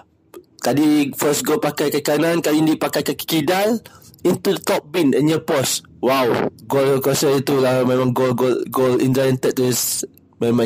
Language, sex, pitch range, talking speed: Malay, male, 120-140 Hz, 165 wpm